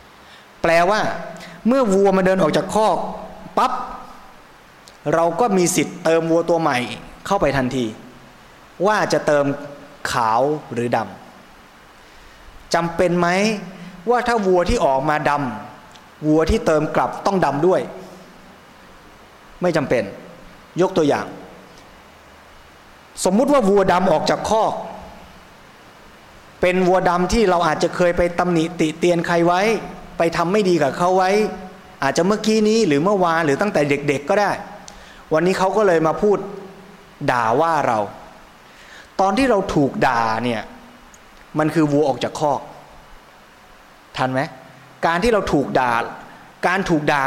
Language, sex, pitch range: Thai, male, 145-190 Hz